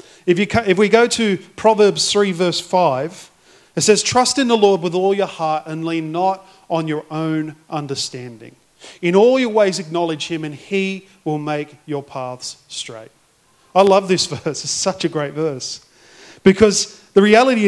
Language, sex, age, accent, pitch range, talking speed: English, male, 40-59, Australian, 160-200 Hz, 175 wpm